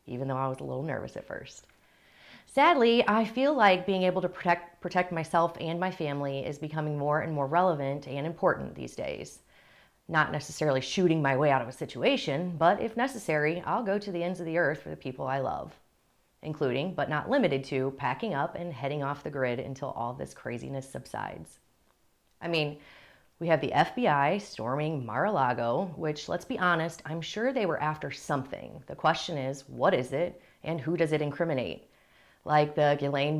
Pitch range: 140-180 Hz